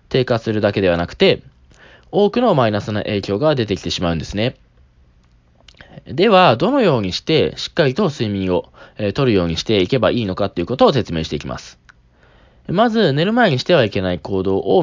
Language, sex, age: Japanese, male, 20-39